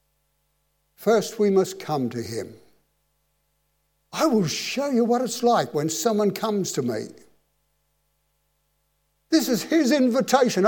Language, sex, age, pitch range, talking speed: English, male, 60-79, 160-225 Hz, 125 wpm